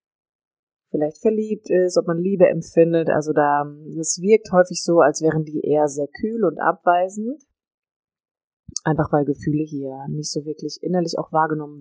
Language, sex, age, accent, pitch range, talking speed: German, female, 20-39, German, 150-180 Hz, 160 wpm